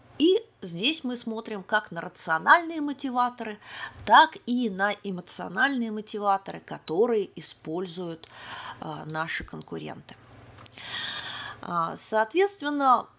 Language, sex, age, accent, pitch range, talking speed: Russian, female, 30-49, native, 165-230 Hz, 80 wpm